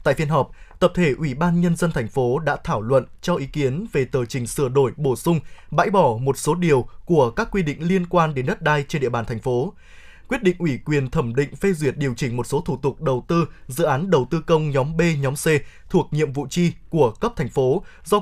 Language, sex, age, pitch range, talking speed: Vietnamese, male, 20-39, 135-175 Hz, 255 wpm